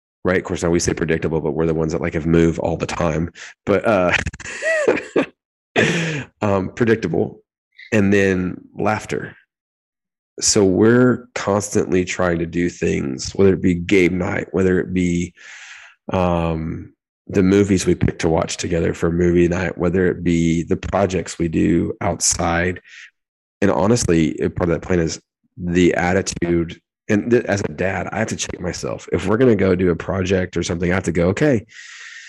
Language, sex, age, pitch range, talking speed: English, male, 30-49, 85-100 Hz, 170 wpm